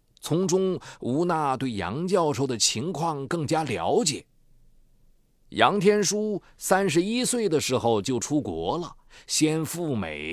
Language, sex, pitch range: Chinese, male, 135-195 Hz